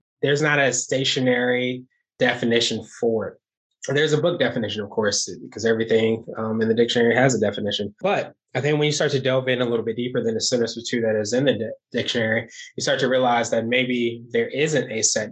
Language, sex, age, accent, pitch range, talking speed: English, male, 20-39, American, 110-130 Hz, 215 wpm